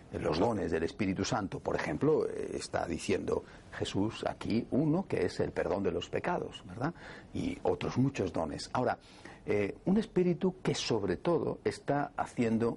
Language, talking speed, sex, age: Spanish, 155 wpm, male, 50-69